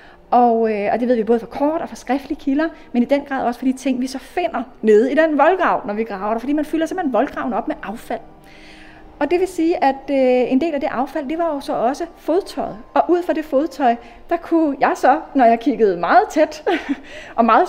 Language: Danish